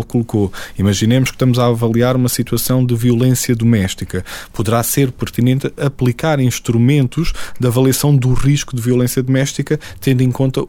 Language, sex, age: Portuguese, male, 20-39